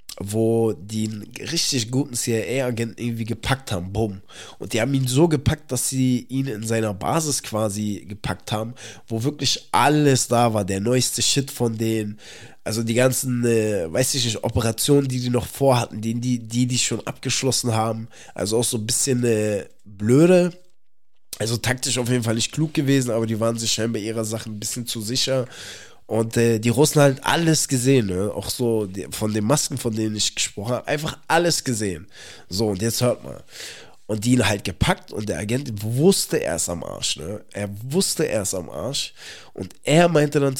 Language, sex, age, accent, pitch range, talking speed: German, male, 20-39, German, 110-130 Hz, 190 wpm